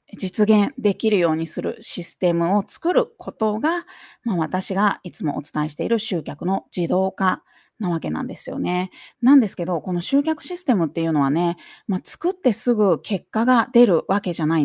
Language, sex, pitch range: Japanese, female, 180-265 Hz